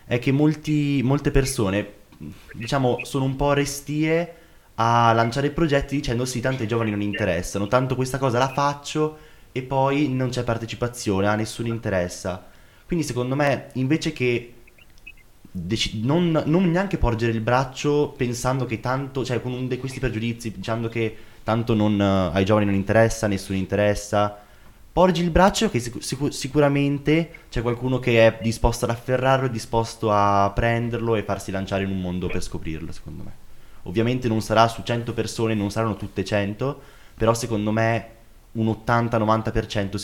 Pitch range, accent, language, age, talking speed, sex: 105-130 Hz, native, Italian, 20-39, 160 wpm, male